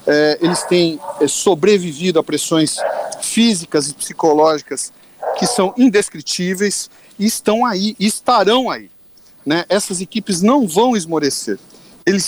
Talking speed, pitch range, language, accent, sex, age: 115 wpm, 160-205 Hz, Portuguese, Brazilian, male, 50-69